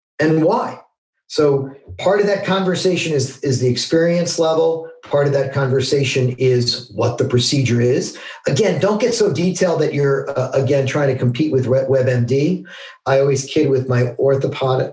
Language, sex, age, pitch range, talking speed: English, male, 50-69, 130-165 Hz, 165 wpm